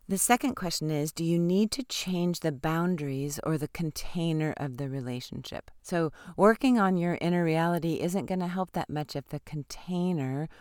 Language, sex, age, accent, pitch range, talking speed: English, female, 40-59, American, 150-185 Hz, 180 wpm